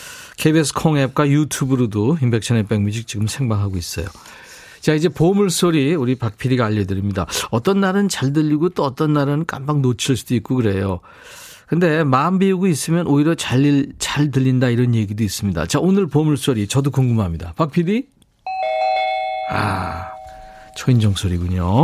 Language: Korean